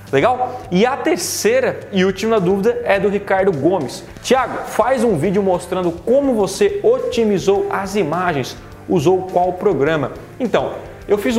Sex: male